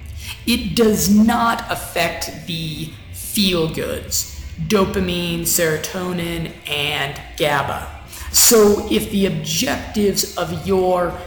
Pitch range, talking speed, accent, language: 170-215 Hz, 85 wpm, American, English